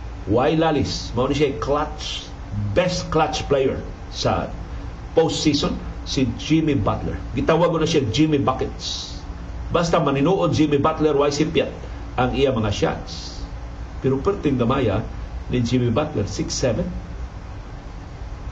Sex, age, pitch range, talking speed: male, 50-69, 100-155 Hz, 115 wpm